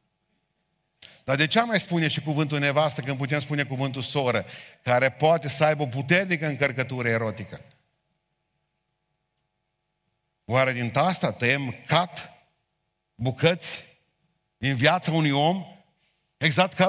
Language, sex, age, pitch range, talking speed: Romanian, male, 50-69, 145-190 Hz, 115 wpm